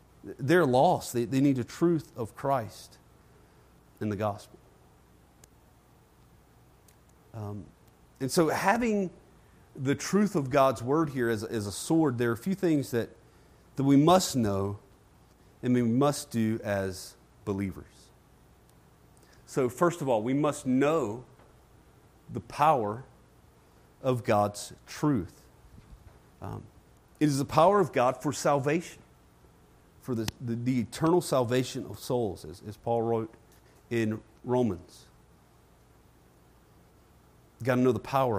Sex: male